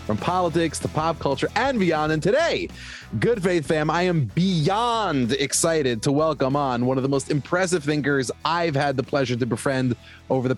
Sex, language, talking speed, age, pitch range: male, English, 185 wpm, 30-49, 120-155 Hz